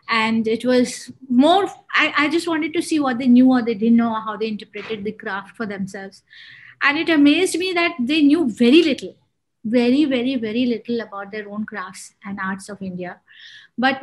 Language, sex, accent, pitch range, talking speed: English, female, Indian, 220-275 Hz, 195 wpm